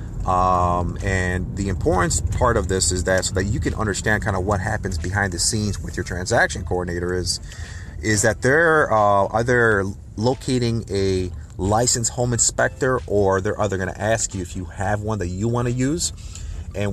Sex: male